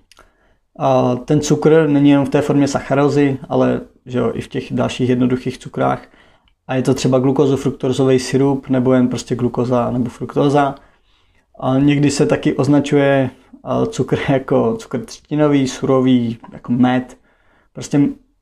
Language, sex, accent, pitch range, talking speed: Czech, male, native, 125-140 Hz, 140 wpm